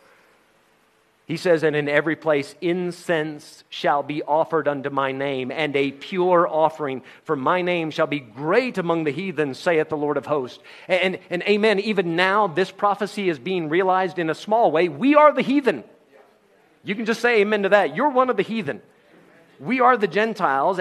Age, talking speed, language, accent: 40-59, 190 wpm, English, American